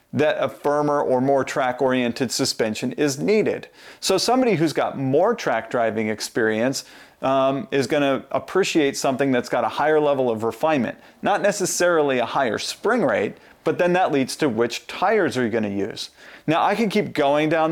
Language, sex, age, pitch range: English, male, 40-59, 120-150 Hz